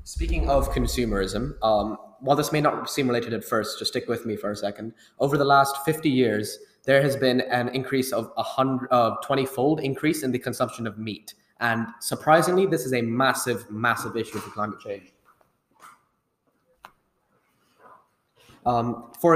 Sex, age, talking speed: male, 10-29, 160 wpm